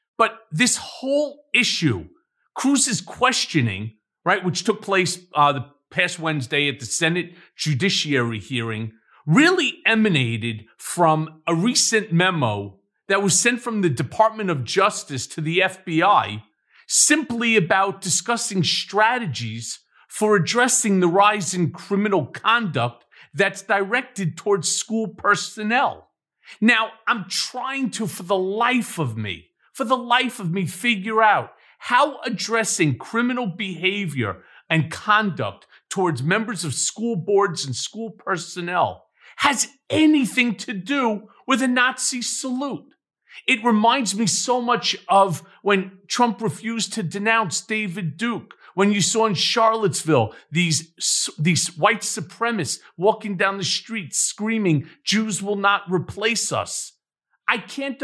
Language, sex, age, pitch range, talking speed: English, male, 40-59, 165-230 Hz, 130 wpm